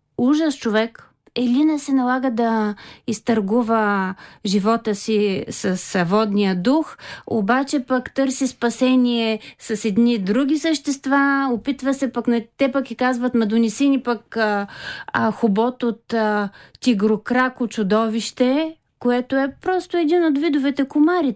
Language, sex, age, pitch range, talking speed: Bulgarian, female, 30-49, 220-265 Hz, 115 wpm